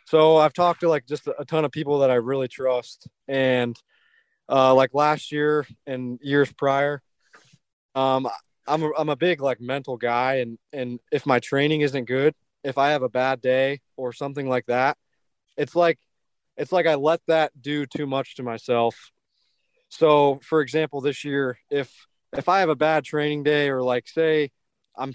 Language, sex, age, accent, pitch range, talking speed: English, male, 20-39, American, 125-150 Hz, 180 wpm